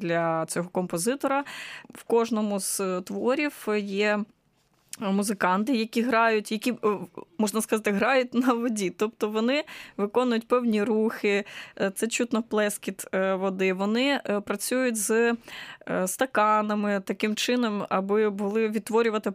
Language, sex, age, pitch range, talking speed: Ukrainian, female, 20-39, 195-230 Hz, 110 wpm